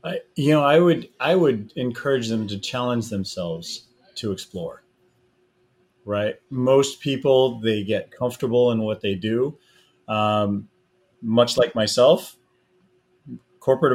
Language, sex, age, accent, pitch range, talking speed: English, male, 30-49, American, 105-125 Hz, 125 wpm